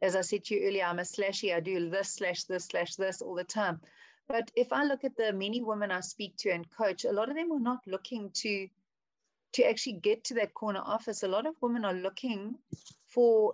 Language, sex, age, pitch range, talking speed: English, female, 30-49, 185-225 Hz, 240 wpm